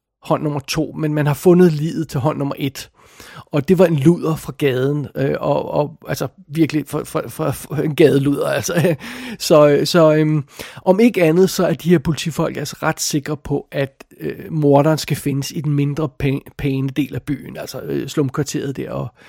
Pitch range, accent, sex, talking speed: 145-180 Hz, native, male, 195 wpm